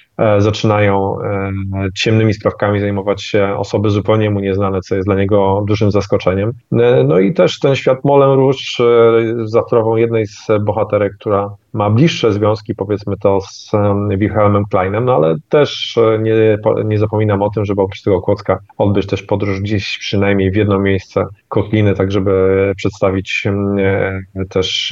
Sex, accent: male, native